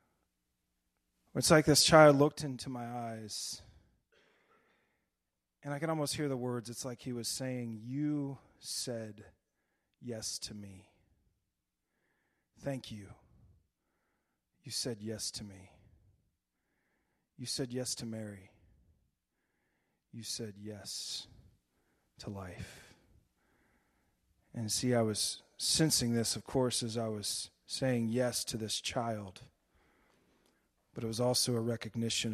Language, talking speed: English, 120 wpm